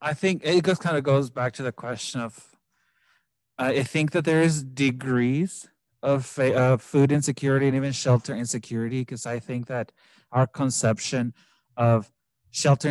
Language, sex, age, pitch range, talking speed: English, male, 30-49, 115-140 Hz, 165 wpm